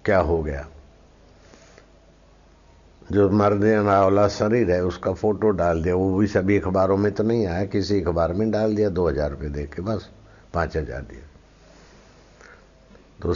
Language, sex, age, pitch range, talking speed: Hindi, male, 60-79, 85-105 Hz, 160 wpm